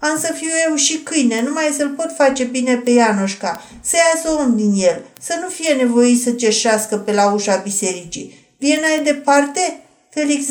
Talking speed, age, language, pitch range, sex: 185 wpm, 50-69, Romanian, 210-290 Hz, female